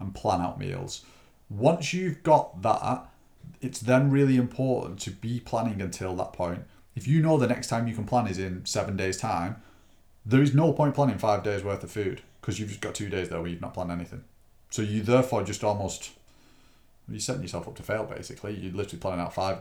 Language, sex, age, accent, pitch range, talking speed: English, male, 30-49, British, 95-125 Hz, 215 wpm